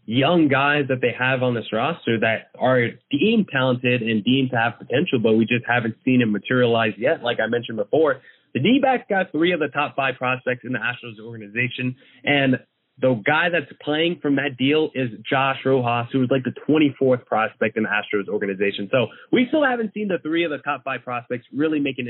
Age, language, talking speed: 20-39, English, 210 wpm